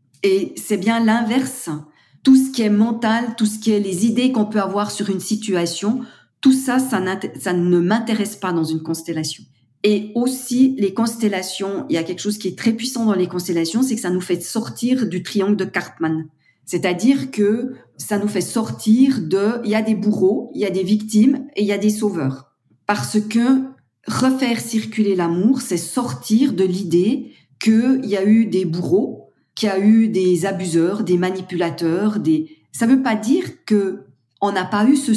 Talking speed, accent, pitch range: 195 wpm, French, 180-235 Hz